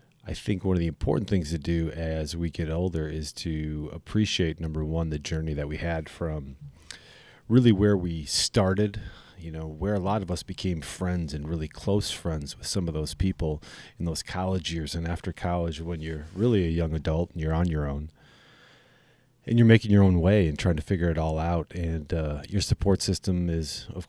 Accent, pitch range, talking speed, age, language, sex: American, 80-100 Hz, 210 wpm, 30-49, English, male